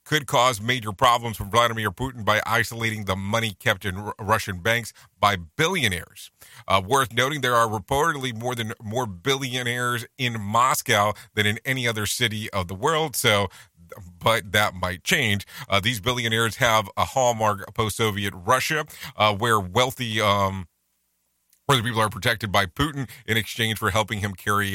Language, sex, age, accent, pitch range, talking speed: English, male, 40-59, American, 105-130 Hz, 160 wpm